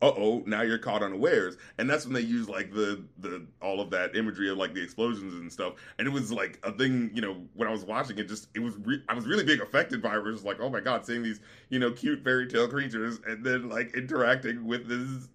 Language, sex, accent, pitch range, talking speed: English, male, American, 110-145 Hz, 260 wpm